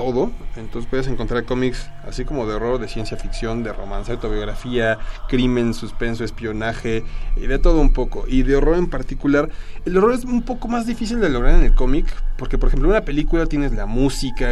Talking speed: 205 wpm